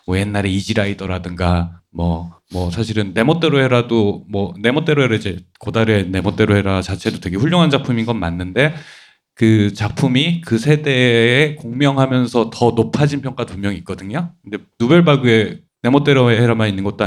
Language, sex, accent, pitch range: Korean, male, native, 100-125 Hz